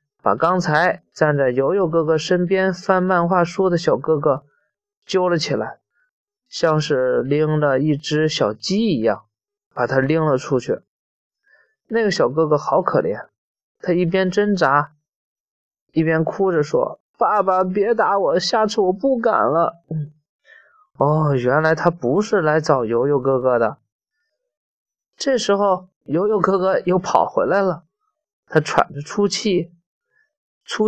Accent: native